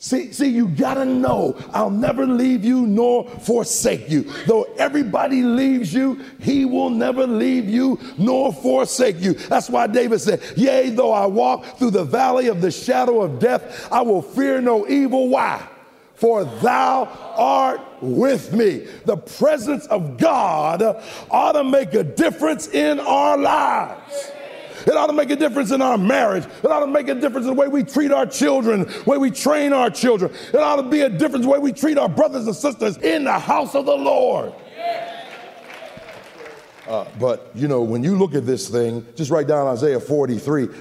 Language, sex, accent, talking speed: English, male, American, 185 wpm